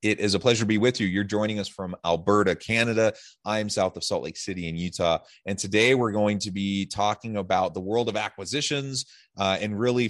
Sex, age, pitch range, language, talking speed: male, 30-49, 80-105 Hz, English, 225 wpm